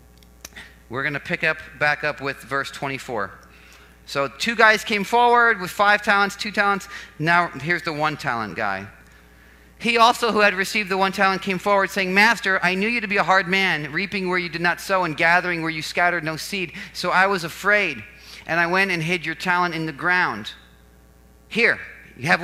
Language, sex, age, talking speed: English, male, 40-59, 200 wpm